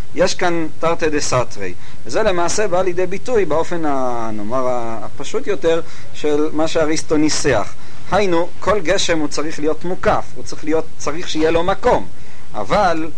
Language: Hebrew